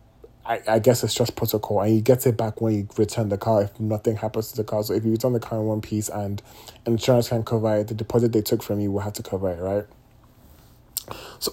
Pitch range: 110-130 Hz